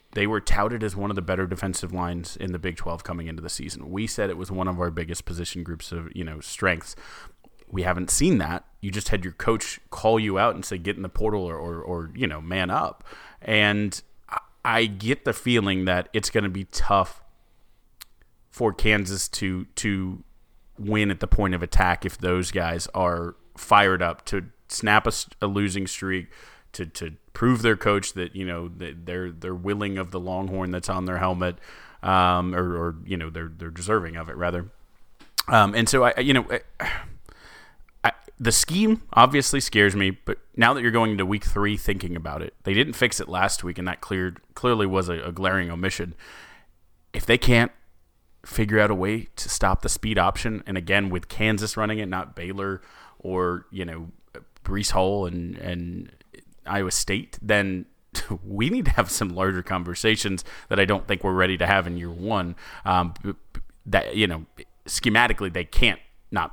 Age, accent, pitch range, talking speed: 30-49, American, 90-105 Hz, 190 wpm